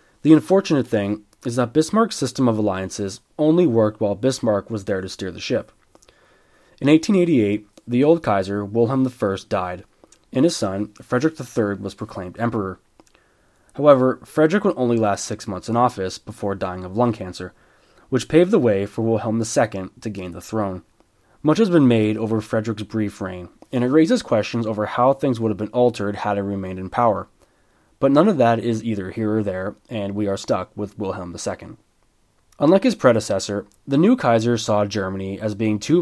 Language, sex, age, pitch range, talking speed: English, male, 20-39, 100-125 Hz, 185 wpm